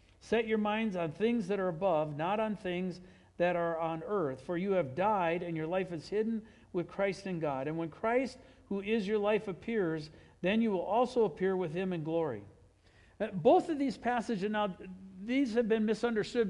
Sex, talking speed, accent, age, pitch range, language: male, 195 wpm, American, 60-79, 170-215 Hz, English